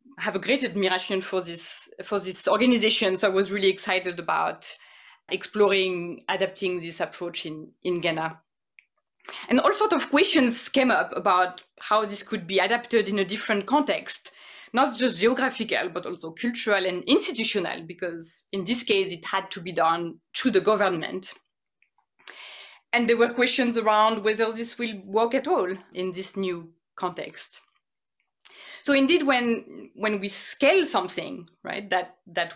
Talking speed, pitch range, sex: 155 wpm, 185-240 Hz, female